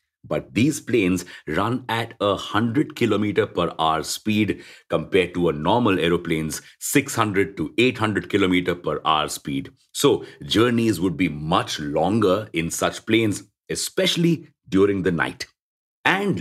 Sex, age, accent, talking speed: male, 50-69, Indian, 135 wpm